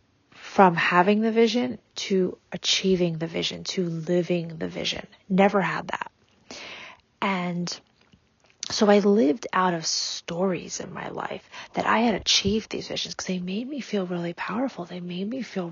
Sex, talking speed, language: female, 160 wpm, English